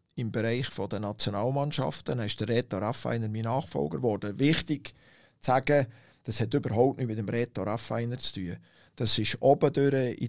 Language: German